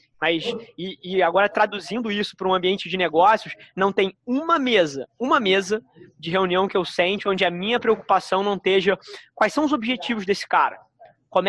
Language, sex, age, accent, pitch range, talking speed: Portuguese, male, 20-39, Brazilian, 180-225 Hz, 185 wpm